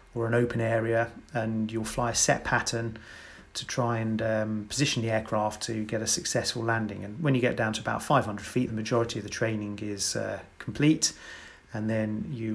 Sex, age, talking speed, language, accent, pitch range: male, 30-49, 200 wpm, English, British, 110-125 Hz